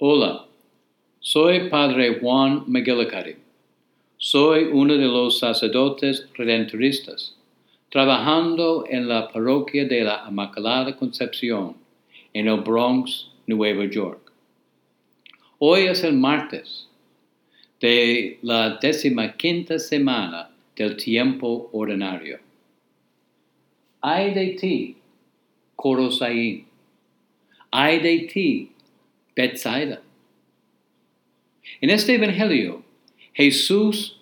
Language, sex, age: English, male, 60-79